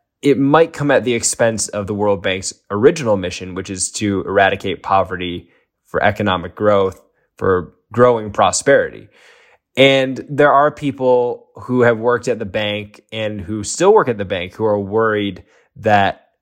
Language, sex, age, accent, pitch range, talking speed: English, male, 10-29, American, 100-125 Hz, 160 wpm